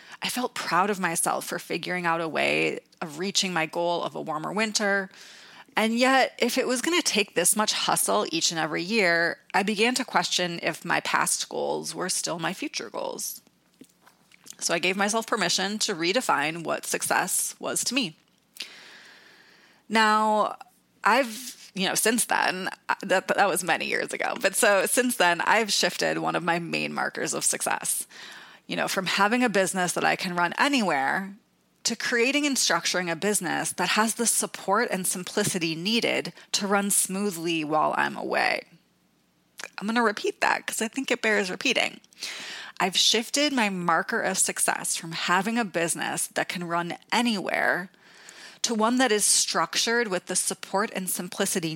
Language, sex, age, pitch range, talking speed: English, female, 20-39, 175-230 Hz, 170 wpm